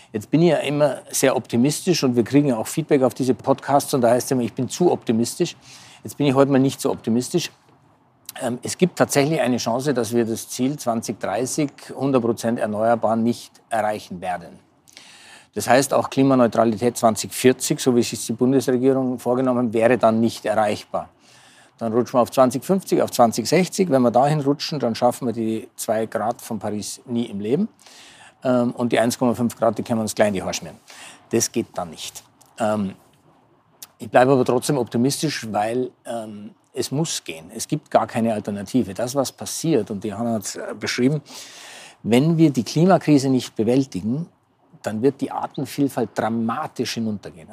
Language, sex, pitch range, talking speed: German, male, 115-140 Hz, 170 wpm